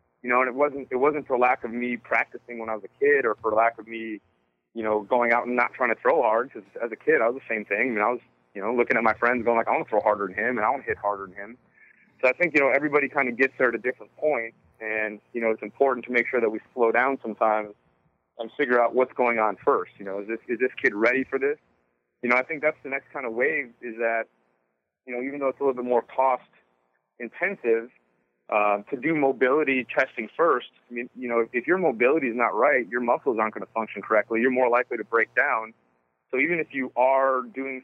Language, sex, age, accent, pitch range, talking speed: English, male, 30-49, American, 110-130 Hz, 270 wpm